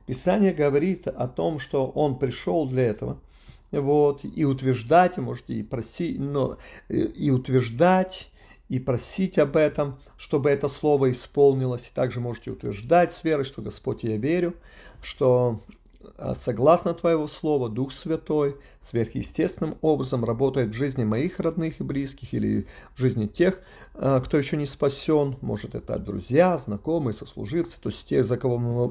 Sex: male